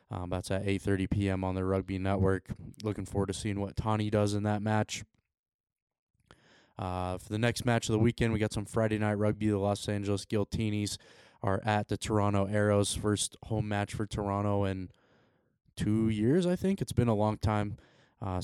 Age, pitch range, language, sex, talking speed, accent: 20-39, 100-110 Hz, English, male, 190 wpm, American